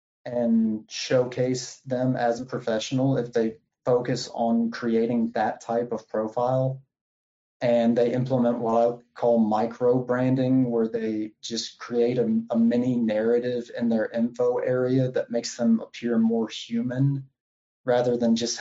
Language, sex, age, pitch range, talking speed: English, male, 30-49, 115-130 Hz, 140 wpm